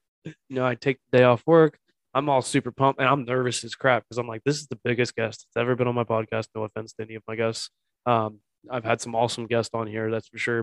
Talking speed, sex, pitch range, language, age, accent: 275 wpm, male, 115-130 Hz, English, 20-39, American